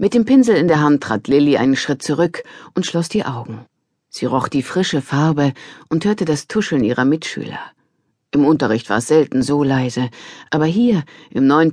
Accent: German